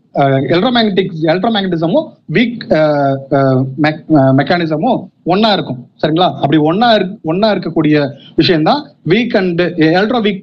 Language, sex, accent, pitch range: Tamil, male, native, 155-210 Hz